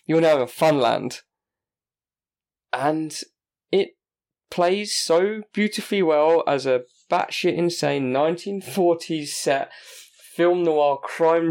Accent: British